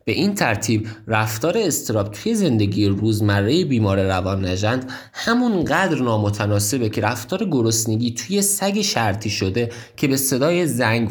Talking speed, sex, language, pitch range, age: 130 wpm, male, Persian, 100-135 Hz, 20-39